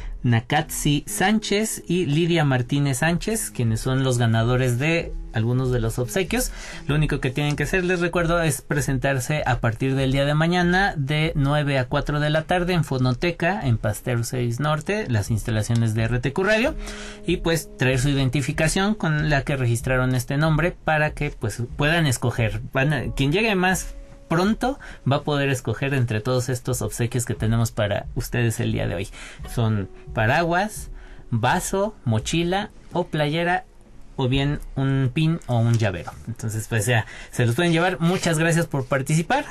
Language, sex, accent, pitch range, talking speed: Spanish, male, Mexican, 120-160 Hz, 165 wpm